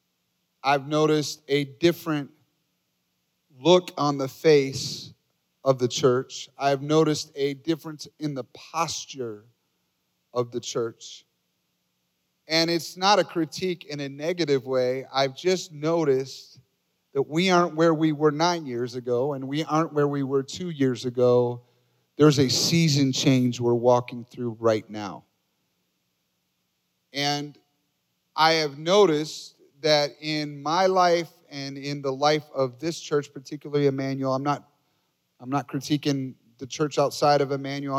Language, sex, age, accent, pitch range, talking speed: English, male, 40-59, American, 130-155 Hz, 135 wpm